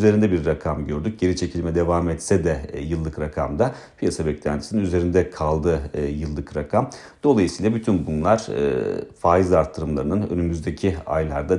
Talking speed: 125 wpm